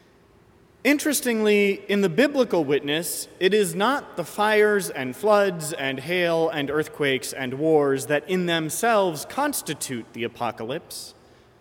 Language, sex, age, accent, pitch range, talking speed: English, male, 30-49, American, 140-185 Hz, 125 wpm